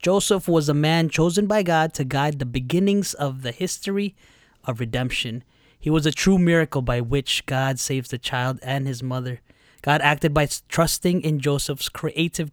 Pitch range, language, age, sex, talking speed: 130-160 Hz, English, 20-39, male, 175 wpm